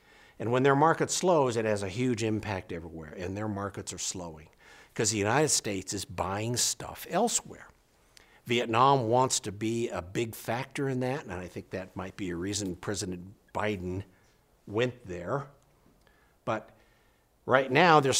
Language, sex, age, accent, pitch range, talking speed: English, male, 60-79, American, 100-125 Hz, 160 wpm